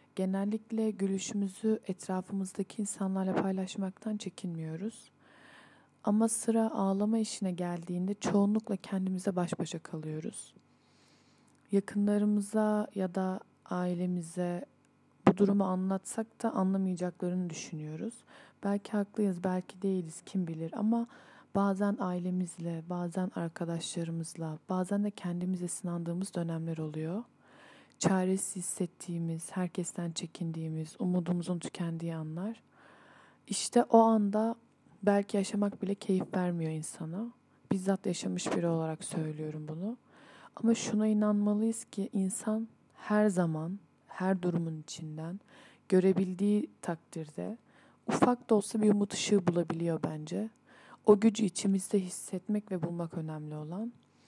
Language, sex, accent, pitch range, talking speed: Turkish, female, native, 175-210 Hz, 105 wpm